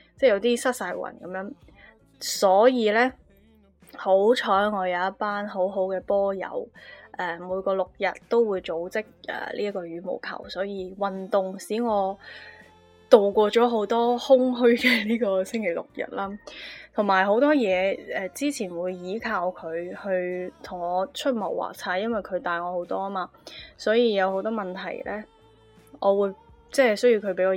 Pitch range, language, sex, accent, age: 180-215 Hz, Chinese, female, native, 10-29